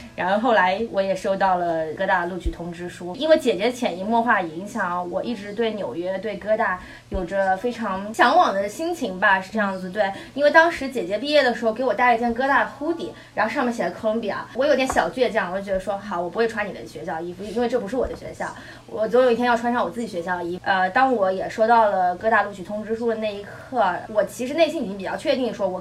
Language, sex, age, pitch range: Chinese, female, 20-39, 190-245 Hz